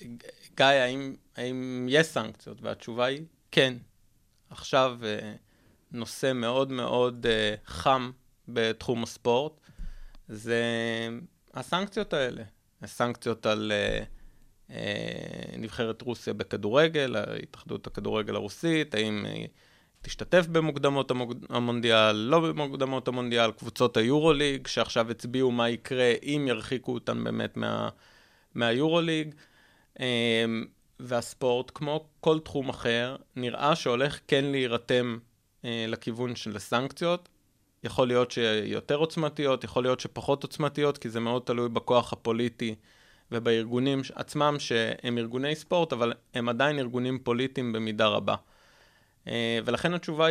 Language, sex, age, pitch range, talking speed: Hebrew, male, 30-49, 115-140 Hz, 100 wpm